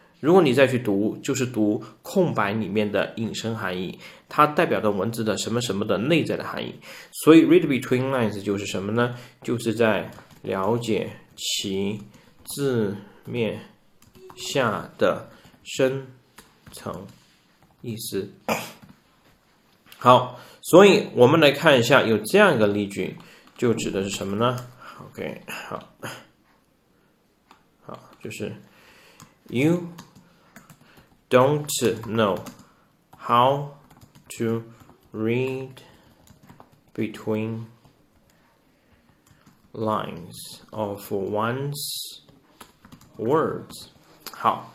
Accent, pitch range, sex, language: native, 110-135 Hz, male, Chinese